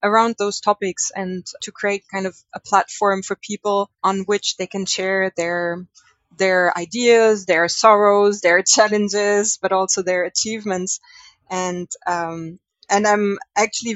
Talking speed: 140 wpm